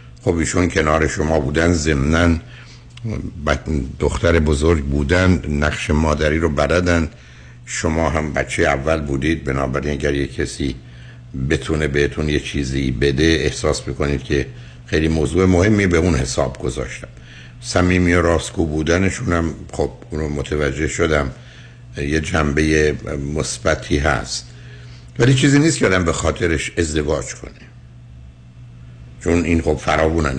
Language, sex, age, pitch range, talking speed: Persian, male, 60-79, 70-85 Hz, 120 wpm